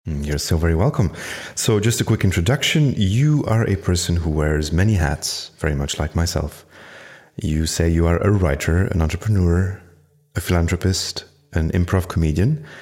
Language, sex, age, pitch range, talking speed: English, male, 30-49, 80-100 Hz, 160 wpm